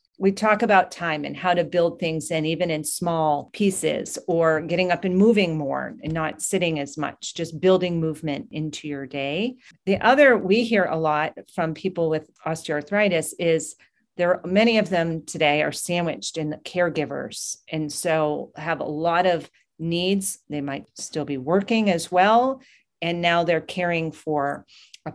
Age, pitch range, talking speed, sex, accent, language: 40-59, 155-185 Hz, 170 wpm, female, American, English